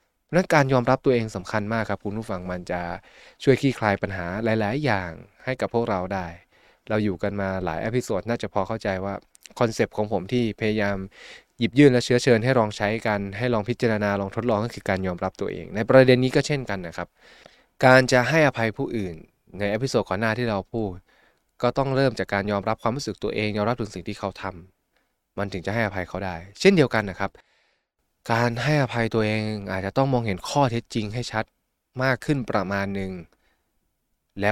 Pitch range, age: 95-125 Hz, 20-39